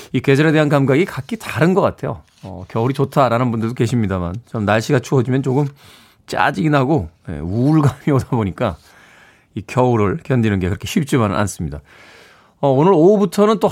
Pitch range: 105-160 Hz